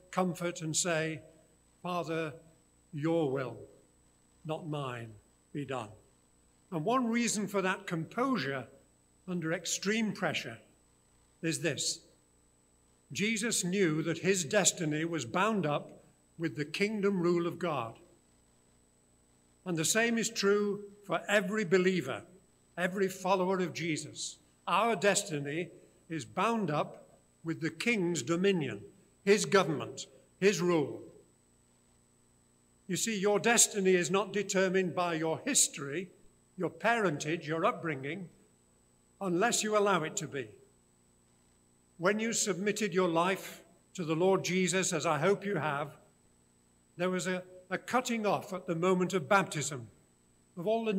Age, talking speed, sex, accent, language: 50-69, 125 wpm, male, British, English